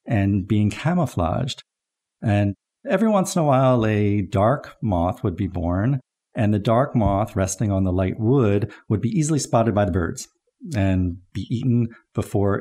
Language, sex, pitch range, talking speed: English, male, 95-120 Hz, 165 wpm